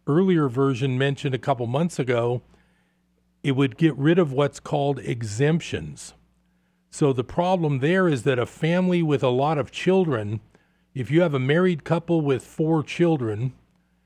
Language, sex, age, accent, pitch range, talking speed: English, male, 50-69, American, 130-165 Hz, 160 wpm